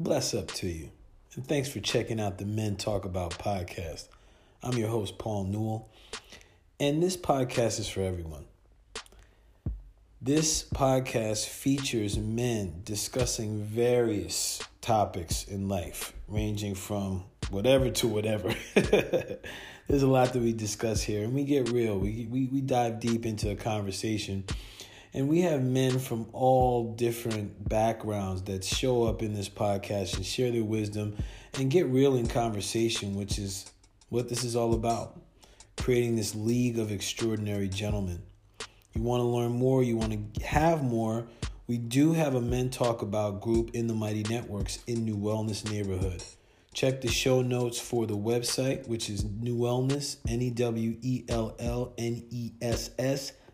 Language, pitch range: English, 105-120 Hz